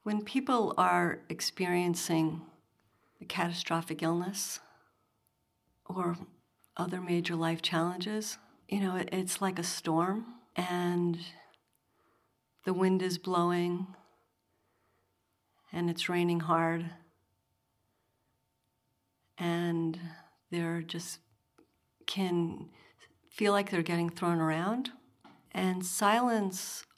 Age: 50-69